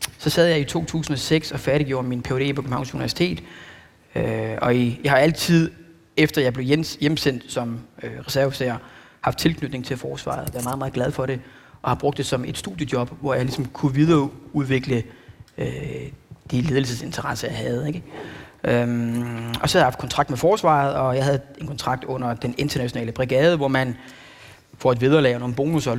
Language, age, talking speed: Danish, 30-49, 185 wpm